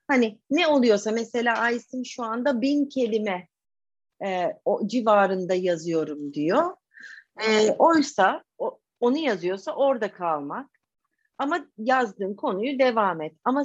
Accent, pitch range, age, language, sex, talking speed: native, 200-280 Hz, 40-59, Turkish, female, 120 wpm